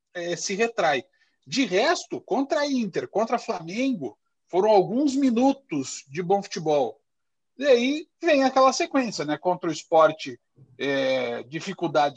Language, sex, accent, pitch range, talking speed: Portuguese, male, Brazilian, 165-245 Hz, 140 wpm